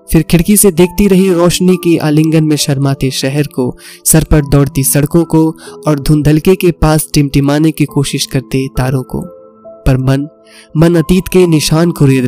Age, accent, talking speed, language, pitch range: 20-39, native, 170 wpm, Hindi, 140-165 Hz